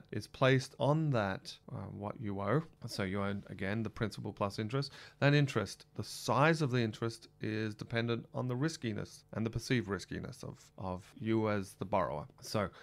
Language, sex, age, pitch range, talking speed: English, male, 30-49, 100-130 Hz, 180 wpm